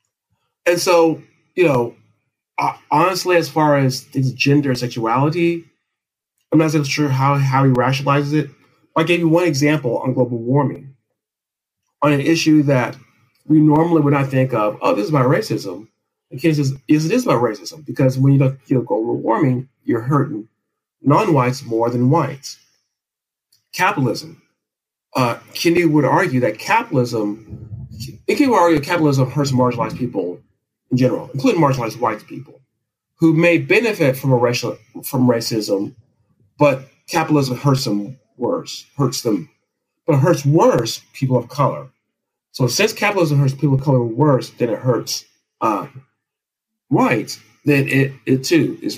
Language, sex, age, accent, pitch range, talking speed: English, male, 40-59, American, 125-160 Hz, 155 wpm